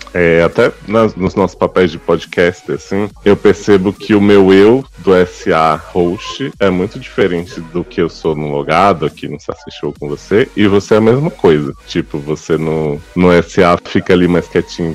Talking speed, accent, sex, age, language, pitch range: 195 wpm, Brazilian, male, 20-39, Portuguese, 90-120 Hz